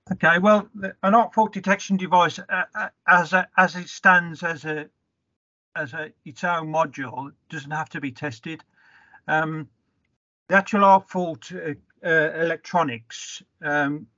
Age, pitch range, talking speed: 50-69, 130-160 Hz, 145 wpm